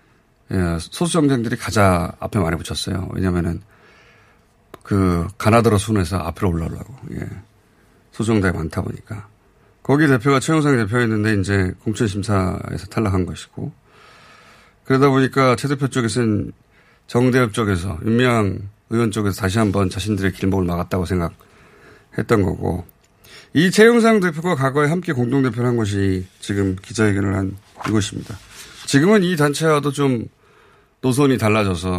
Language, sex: Korean, male